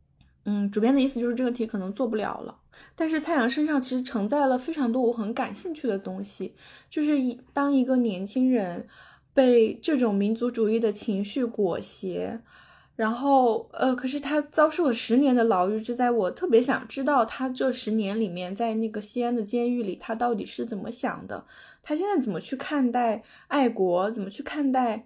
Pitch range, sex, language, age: 215-265 Hz, female, Chinese, 10-29